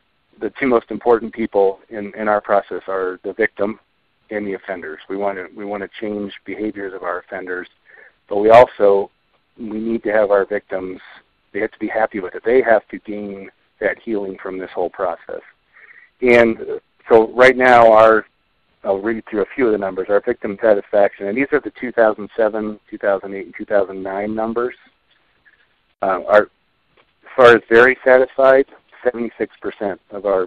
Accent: American